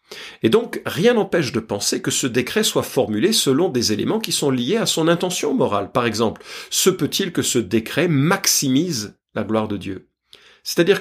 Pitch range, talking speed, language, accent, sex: 115-170 Hz, 185 wpm, French, French, male